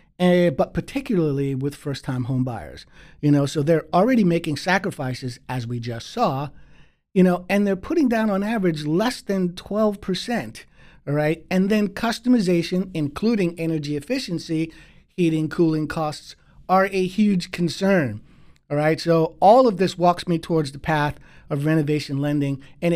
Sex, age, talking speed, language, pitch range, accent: male, 50-69, 160 wpm, English, 145-190 Hz, American